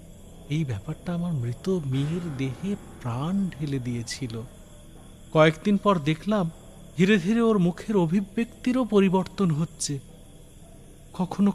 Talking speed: 105 wpm